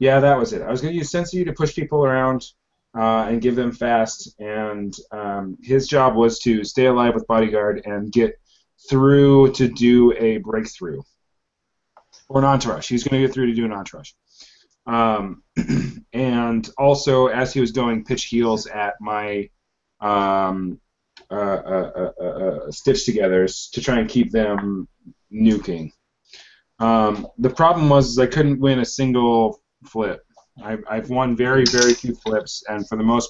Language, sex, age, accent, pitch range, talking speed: English, male, 30-49, American, 110-135 Hz, 170 wpm